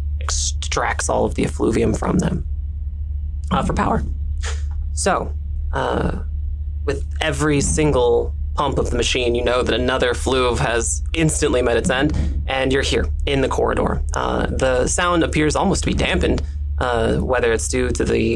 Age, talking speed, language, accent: 20-39, 160 wpm, English, American